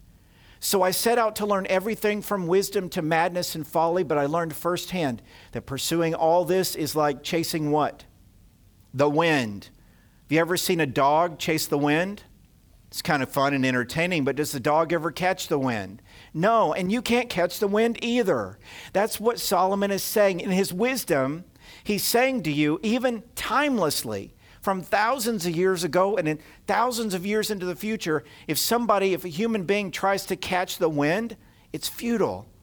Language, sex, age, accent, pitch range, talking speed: English, male, 50-69, American, 150-205 Hz, 180 wpm